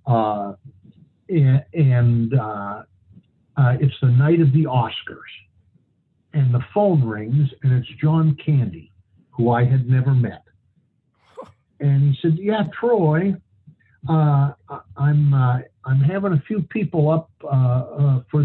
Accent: American